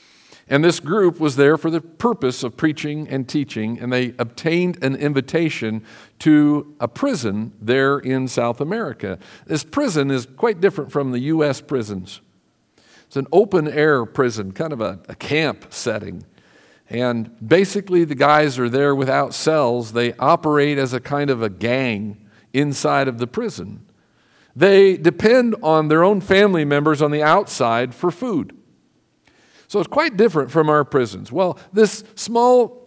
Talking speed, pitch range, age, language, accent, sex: 155 wpm, 125-180 Hz, 50-69, English, American, male